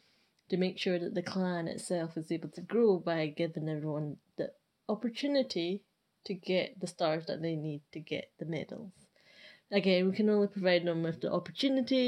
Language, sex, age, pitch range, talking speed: English, female, 20-39, 175-210 Hz, 180 wpm